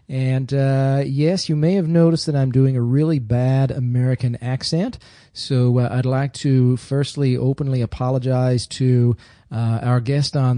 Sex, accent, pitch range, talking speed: male, American, 125-150 Hz, 160 wpm